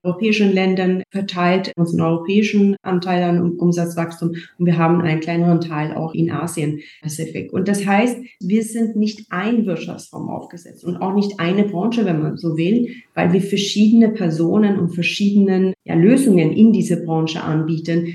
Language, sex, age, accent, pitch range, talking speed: German, female, 40-59, German, 170-205 Hz, 160 wpm